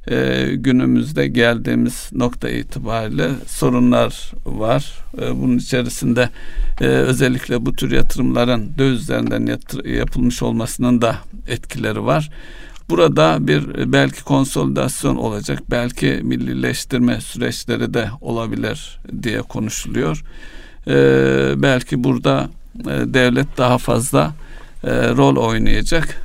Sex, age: male, 60-79